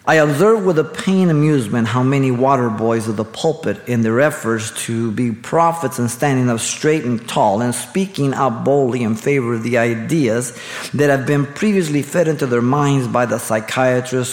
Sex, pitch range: male, 120-155 Hz